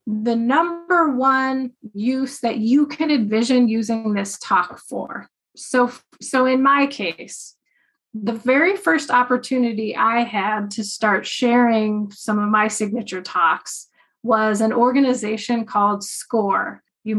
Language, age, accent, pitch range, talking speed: English, 30-49, American, 215-270 Hz, 130 wpm